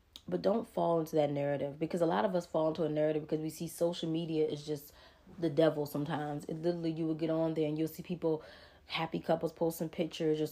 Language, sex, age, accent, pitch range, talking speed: English, female, 20-39, American, 150-175 Hz, 235 wpm